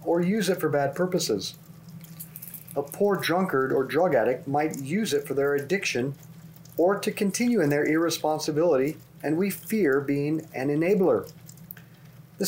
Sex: male